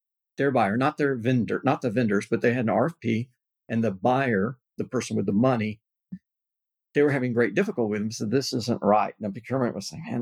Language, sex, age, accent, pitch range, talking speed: English, male, 50-69, American, 115-145 Hz, 225 wpm